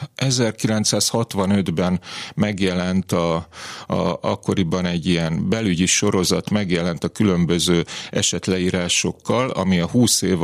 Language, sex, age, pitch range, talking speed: Hungarian, male, 30-49, 90-115 Hz, 100 wpm